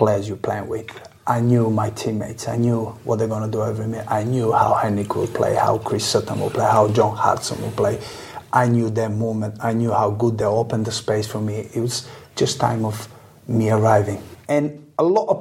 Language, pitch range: English, 110-125 Hz